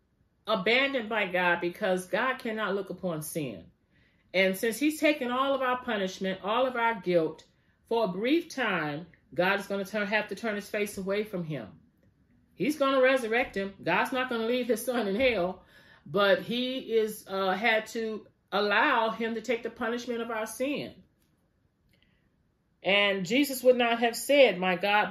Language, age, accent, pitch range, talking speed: English, 40-59, American, 175-230 Hz, 175 wpm